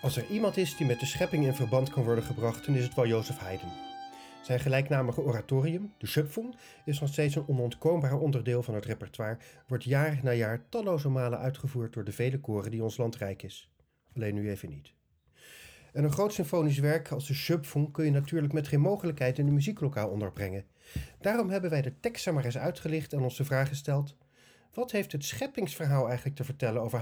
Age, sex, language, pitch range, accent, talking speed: 40-59, male, Dutch, 115-155 Hz, Dutch, 205 wpm